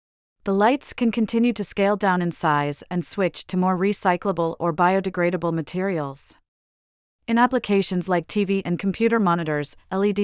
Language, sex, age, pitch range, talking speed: English, female, 30-49, 165-200 Hz, 145 wpm